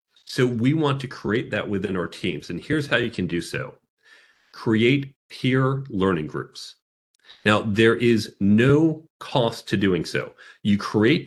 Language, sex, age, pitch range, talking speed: English, male, 40-59, 100-135 Hz, 160 wpm